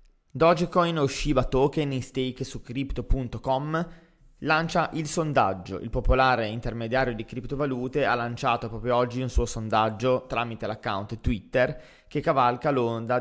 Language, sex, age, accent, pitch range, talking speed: Italian, male, 20-39, native, 115-140 Hz, 130 wpm